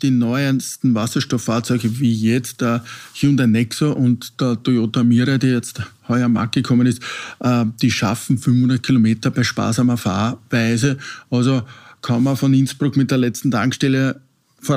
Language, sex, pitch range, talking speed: German, male, 115-135 Hz, 145 wpm